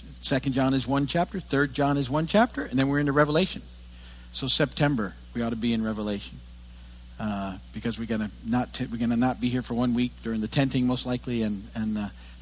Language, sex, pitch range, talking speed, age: English, male, 110-160 Hz, 205 wpm, 50-69